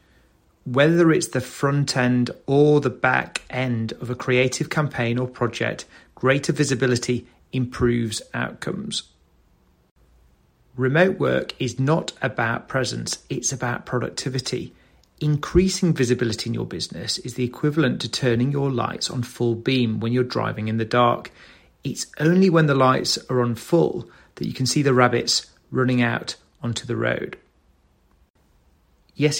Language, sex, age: English, male, 30-49